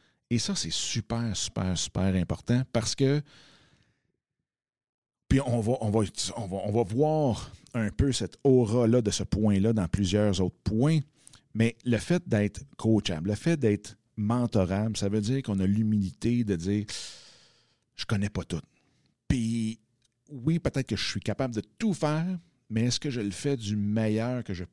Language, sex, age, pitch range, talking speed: French, male, 50-69, 100-125 Hz, 170 wpm